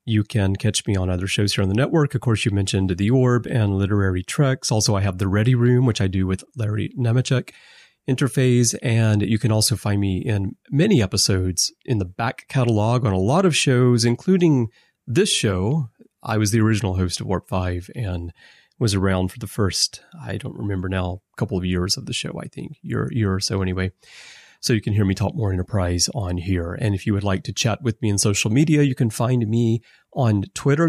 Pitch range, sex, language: 95-125 Hz, male, English